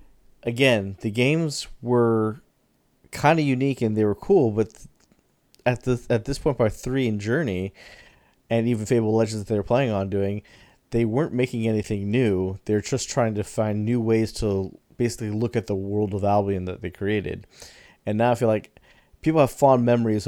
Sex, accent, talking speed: male, American, 190 wpm